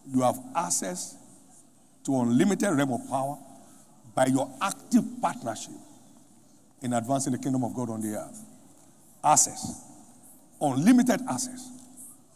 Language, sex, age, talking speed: English, male, 60-79, 115 wpm